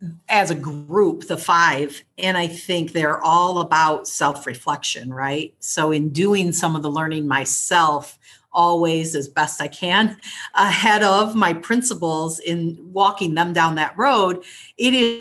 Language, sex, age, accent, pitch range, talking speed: English, female, 40-59, American, 160-205 Hz, 150 wpm